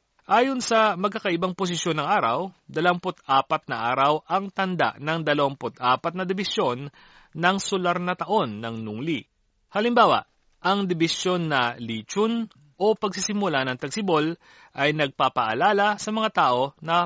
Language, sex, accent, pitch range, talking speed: Filipino, male, native, 135-190 Hz, 125 wpm